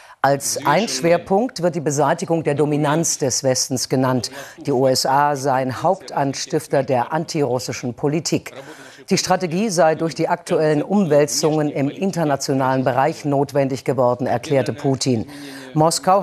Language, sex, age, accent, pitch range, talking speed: German, female, 50-69, German, 130-160 Hz, 120 wpm